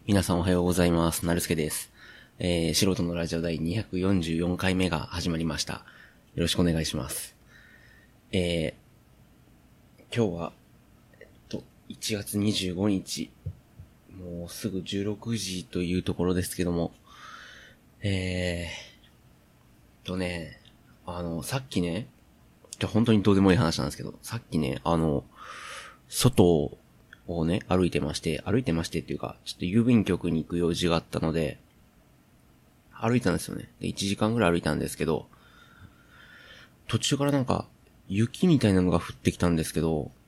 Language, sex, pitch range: Japanese, male, 85-105 Hz